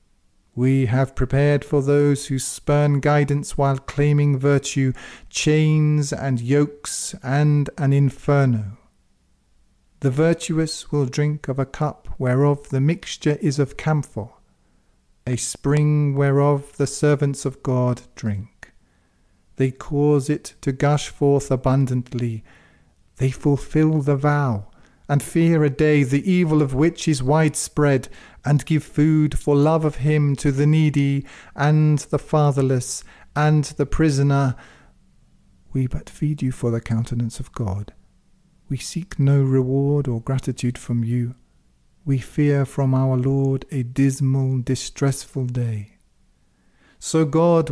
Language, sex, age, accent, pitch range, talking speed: English, male, 40-59, British, 130-150 Hz, 130 wpm